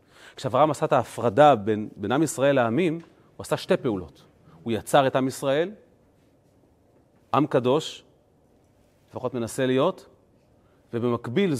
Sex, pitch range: male, 110-145 Hz